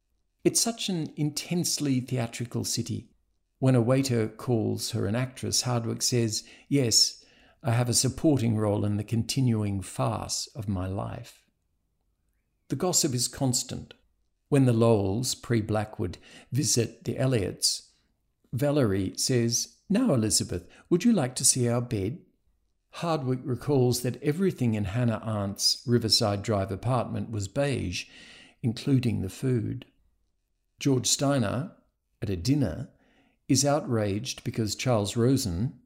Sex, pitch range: male, 105-130 Hz